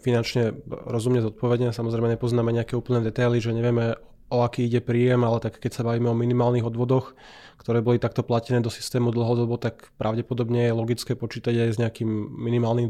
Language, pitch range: Slovak, 115-125 Hz